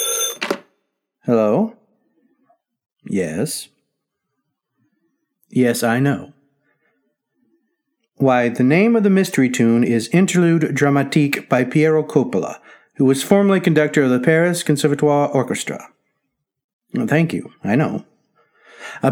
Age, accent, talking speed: 50-69, American, 100 wpm